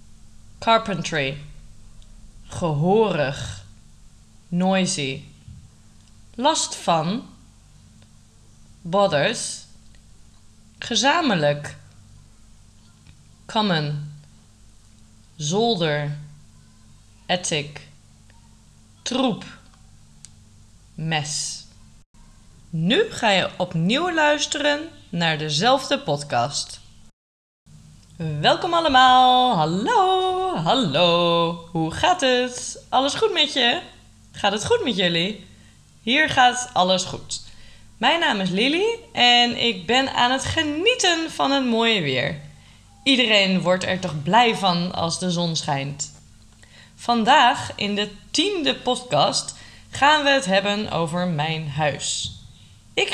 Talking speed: 85 wpm